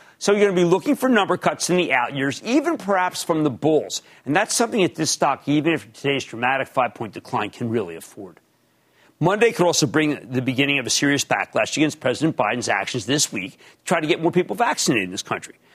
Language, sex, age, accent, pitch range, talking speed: English, male, 40-59, American, 135-185 Hz, 230 wpm